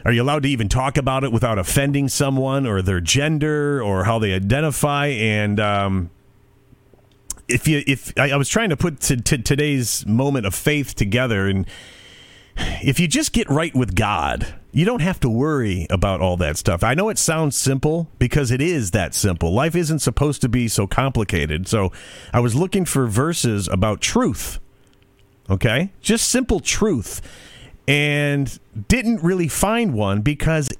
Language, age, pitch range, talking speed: English, 40-59, 105-150 Hz, 170 wpm